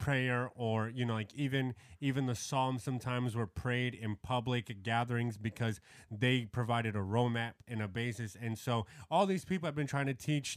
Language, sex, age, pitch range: English, male, 30-49, 110-130 Hz